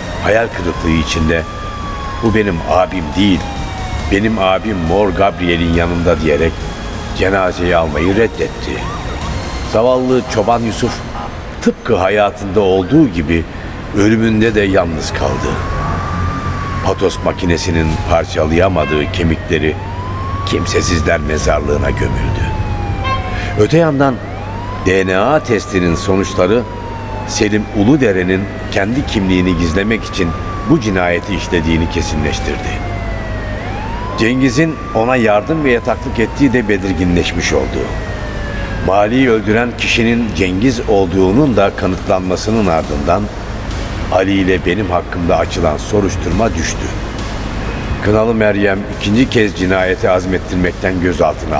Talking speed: 95 wpm